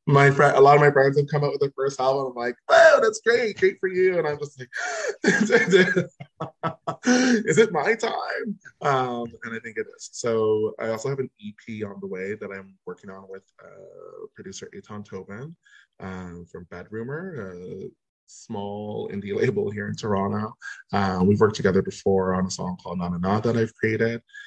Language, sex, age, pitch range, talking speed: English, male, 20-39, 100-135 Hz, 195 wpm